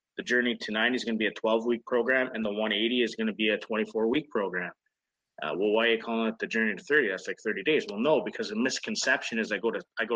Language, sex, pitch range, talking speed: English, male, 105-120 Hz, 285 wpm